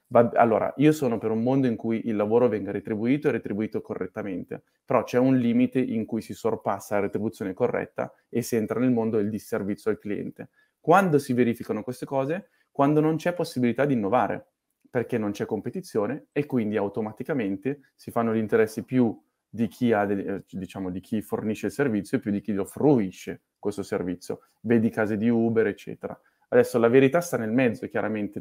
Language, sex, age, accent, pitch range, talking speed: Italian, male, 20-39, native, 105-125 Hz, 185 wpm